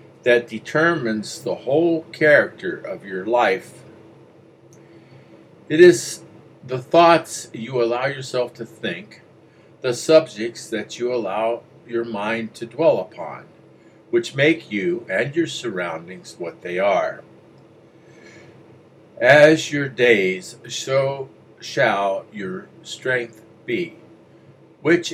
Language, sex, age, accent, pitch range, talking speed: English, male, 60-79, American, 115-150 Hz, 105 wpm